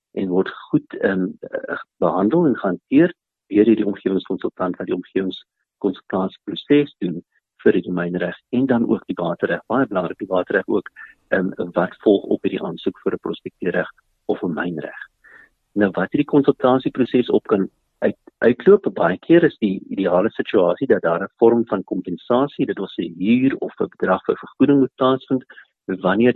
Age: 50-69